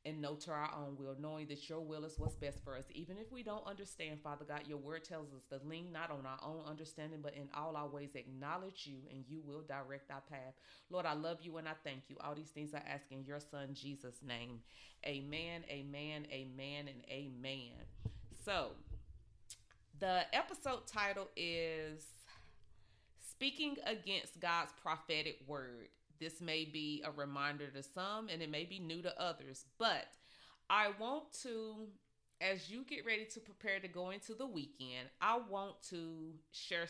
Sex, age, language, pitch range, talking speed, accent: female, 30-49, English, 140-180 Hz, 180 wpm, American